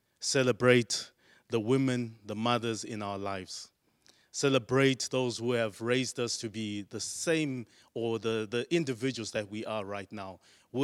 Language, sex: English, male